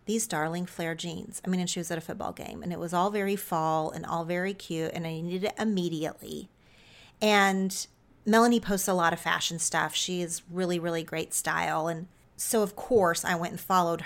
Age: 40-59